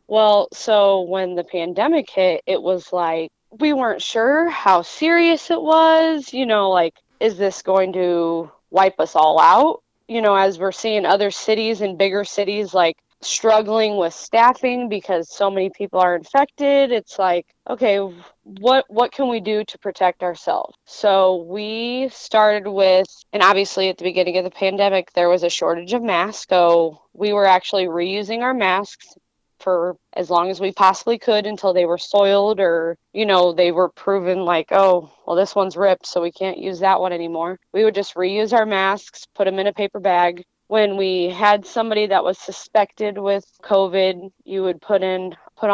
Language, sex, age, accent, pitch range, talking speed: English, female, 20-39, American, 180-215 Hz, 180 wpm